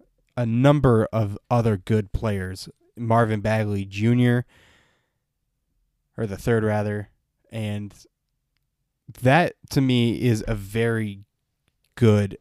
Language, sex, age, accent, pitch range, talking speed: English, male, 20-39, American, 105-125 Hz, 100 wpm